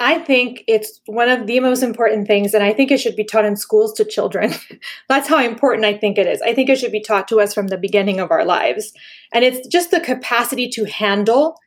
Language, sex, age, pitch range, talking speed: English, female, 20-39, 215-290 Hz, 245 wpm